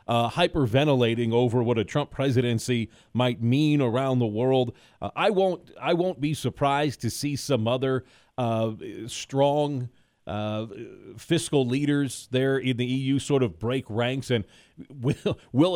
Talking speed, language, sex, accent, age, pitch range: 150 wpm, English, male, American, 30-49, 120-140 Hz